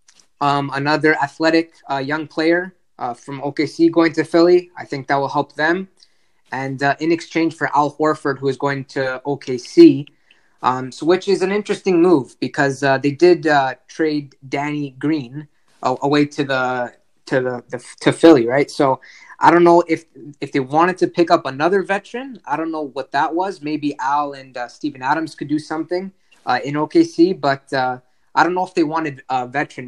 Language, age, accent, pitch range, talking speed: English, 20-39, American, 140-165 Hz, 190 wpm